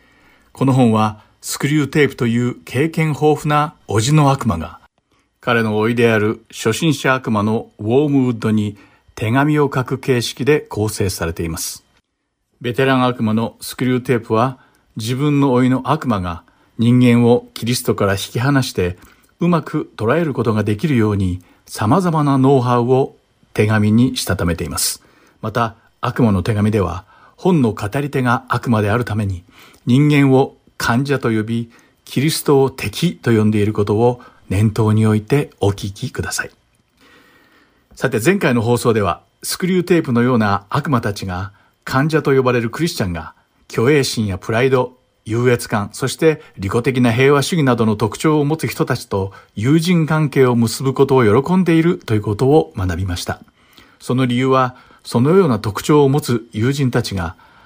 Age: 50-69